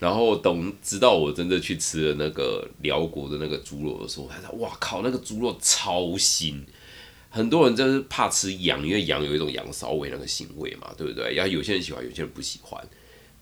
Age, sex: 30-49, male